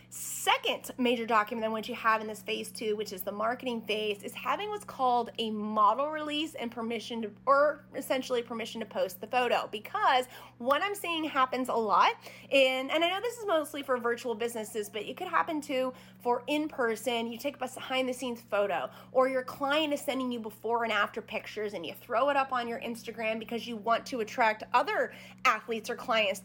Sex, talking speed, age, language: female, 205 wpm, 30-49, English